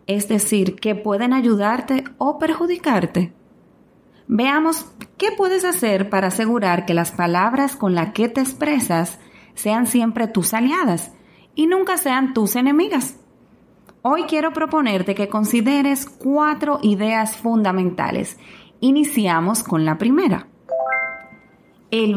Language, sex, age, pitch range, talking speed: Spanish, female, 30-49, 185-265 Hz, 115 wpm